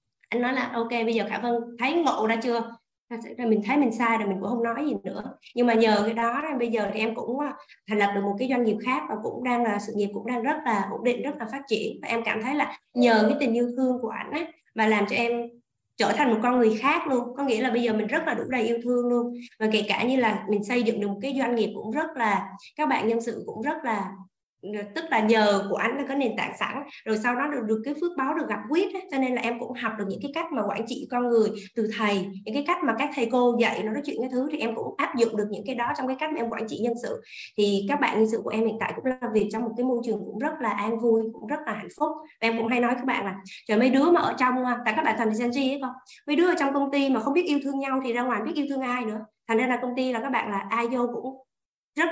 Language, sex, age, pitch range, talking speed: Vietnamese, female, 20-39, 220-260 Hz, 310 wpm